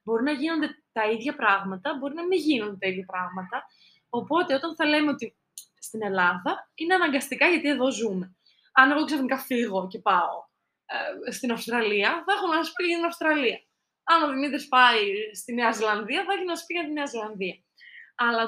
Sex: female